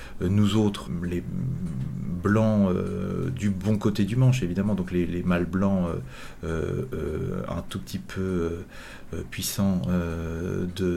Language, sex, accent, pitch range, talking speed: French, male, French, 90-130 Hz, 135 wpm